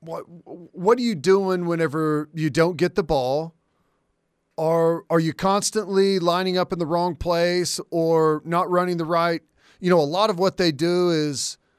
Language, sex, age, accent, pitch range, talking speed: English, male, 40-59, American, 150-175 Hz, 180 wpm